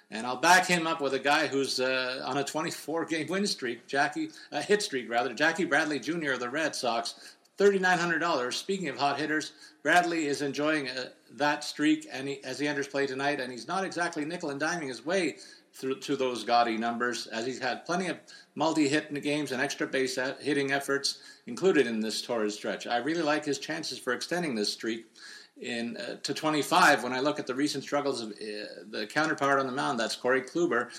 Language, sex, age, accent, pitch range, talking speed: English, male, 50-69, American, 120-150 Hz, 200 wpm